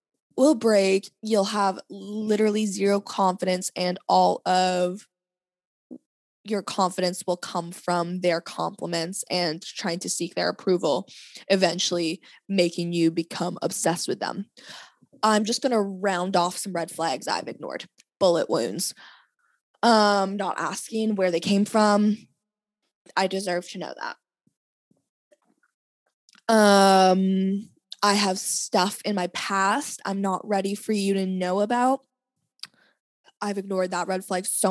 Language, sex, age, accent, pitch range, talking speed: English, female, 20-39, American, 180-210 Hz, 130 wpm